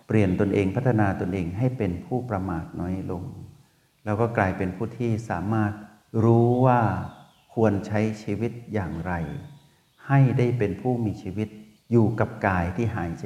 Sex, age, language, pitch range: male, 60-79, Thai, 95-120 Hz